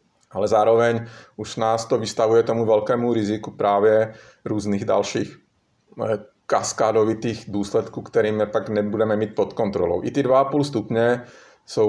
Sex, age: male, 30-49